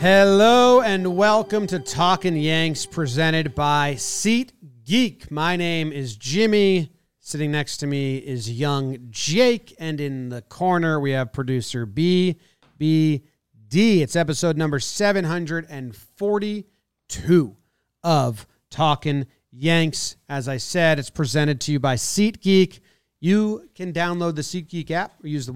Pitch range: 130-180 Hz